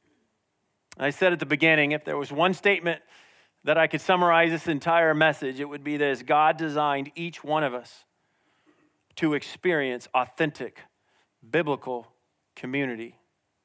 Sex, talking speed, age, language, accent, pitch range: male, 140 wpm, 40-59, English, American, 125-170 Hz